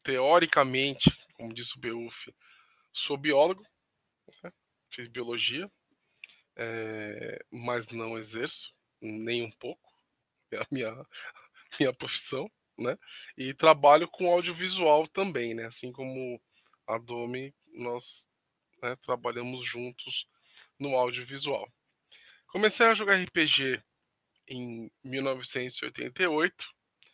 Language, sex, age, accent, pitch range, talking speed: Portuguese, male, 10-29, Brazilian, 125-170 Hz, 100 wpm